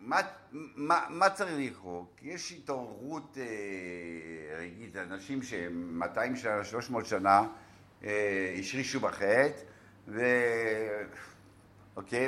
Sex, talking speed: male, 95 wpm